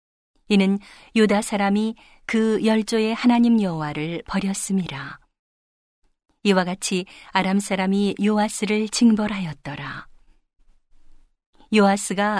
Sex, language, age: female, Korean, 40-59